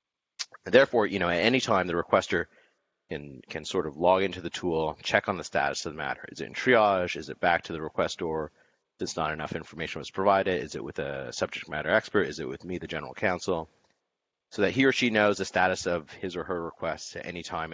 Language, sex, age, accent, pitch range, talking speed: English, male, 40-59, American, 75-95 Hz, 235 wpm